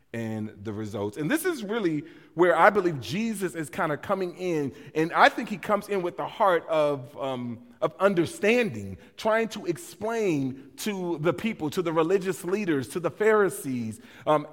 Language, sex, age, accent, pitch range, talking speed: English, male, 40-59, American, 145-210 Hz, 180 wpm